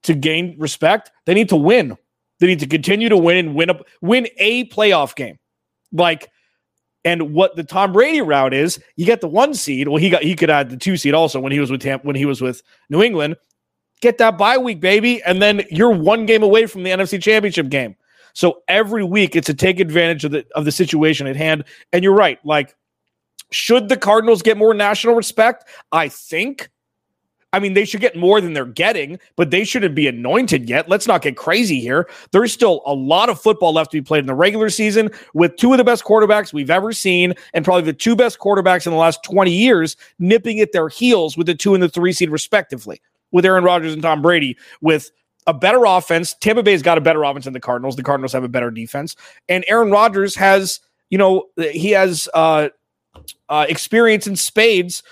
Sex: male